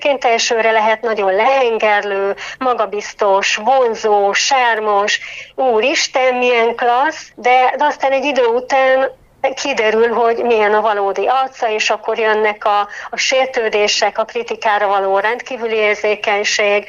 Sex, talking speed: female, 115 wpm